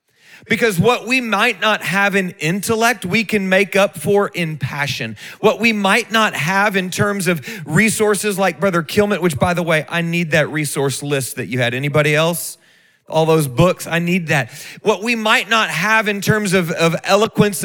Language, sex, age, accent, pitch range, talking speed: English, male, 40-59, American, 150-200 Hz, 195 wpm